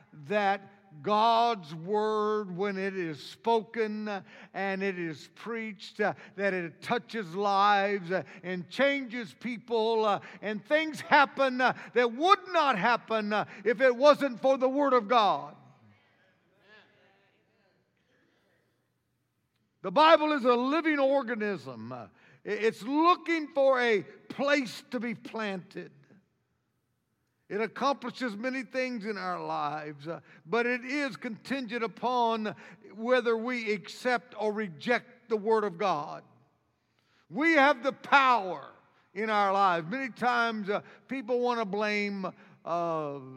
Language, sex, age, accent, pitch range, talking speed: English, male, 50-69, American, 195-250 Hz, 120 wpm